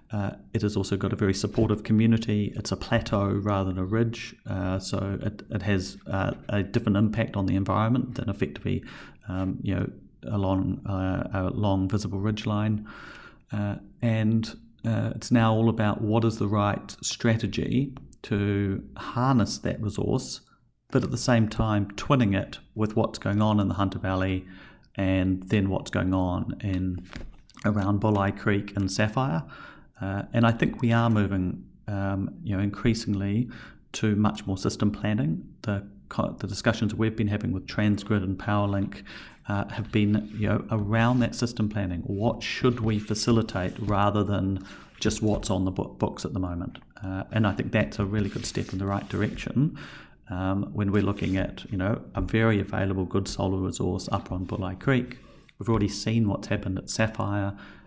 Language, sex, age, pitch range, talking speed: English, male, 40-59, 95-110 Hz, 175 wpm